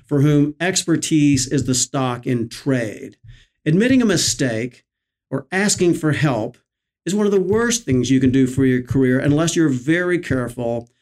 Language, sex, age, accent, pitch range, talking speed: English, male, 50-69, American, 125-155 Hz, 170 wpm